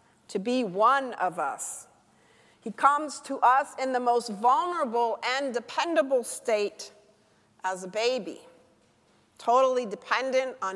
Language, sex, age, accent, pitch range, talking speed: English, female, 40-59, American, 205-260 Hz, 125 wpm